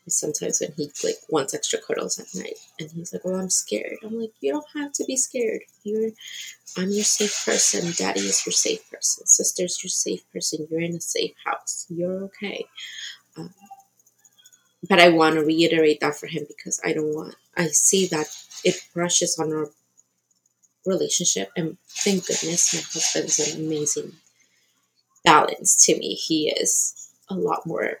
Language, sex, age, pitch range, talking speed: English, female, 20-39, 160-220 Hz, 175 wpm